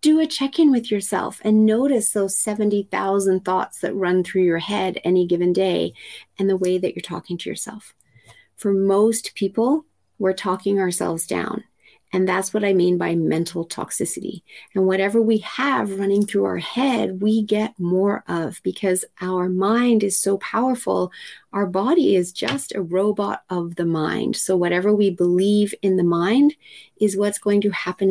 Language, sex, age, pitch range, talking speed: English, female, 30-49, 180-215 Hz, 170 wpm